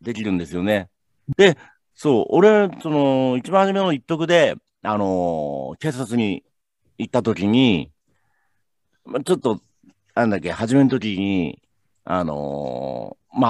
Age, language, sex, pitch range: 50-69, Japanese, male, 95-145 Hz